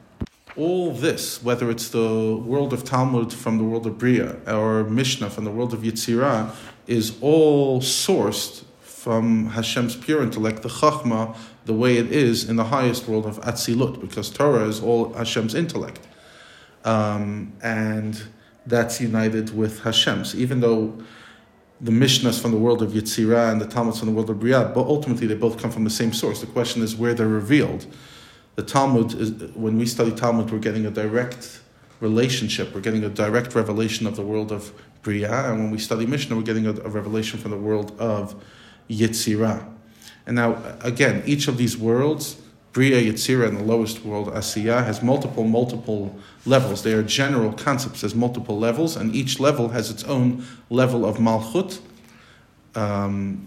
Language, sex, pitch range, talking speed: English, male, 110-120 Hz, 175 wpm